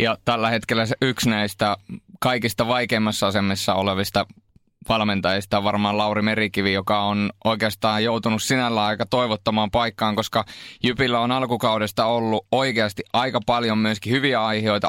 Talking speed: 130 wpm